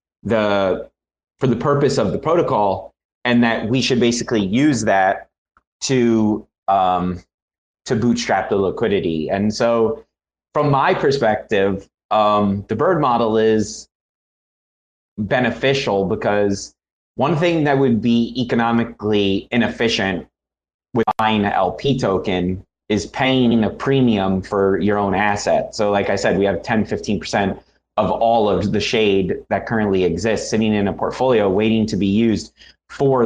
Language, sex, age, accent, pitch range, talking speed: English, male, 30-49, American, 100-120 Hz, 140 wpm